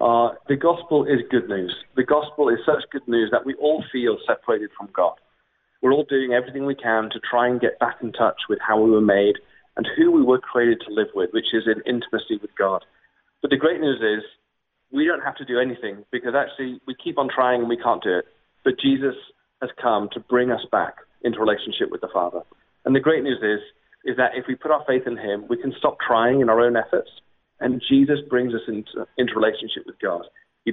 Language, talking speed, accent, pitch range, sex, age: English, 230 wpm, British, 115-155 Hz, male, 30-49